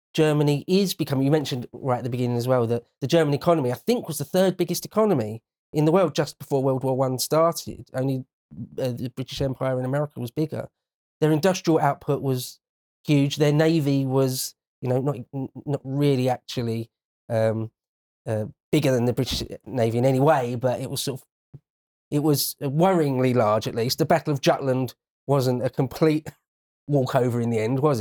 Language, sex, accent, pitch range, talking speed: English, male, British, 125-165 Hz, 185 wpm